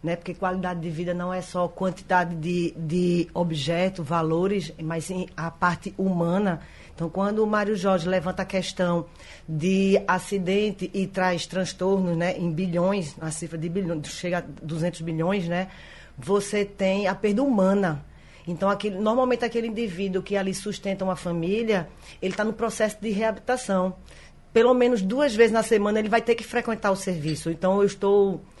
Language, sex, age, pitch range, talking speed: Portuguese, female, 20-39, 175-205 Hz, 170 wpm